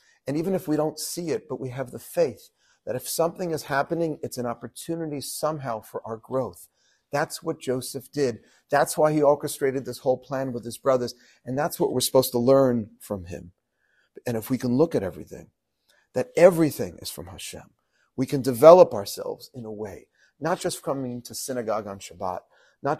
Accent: American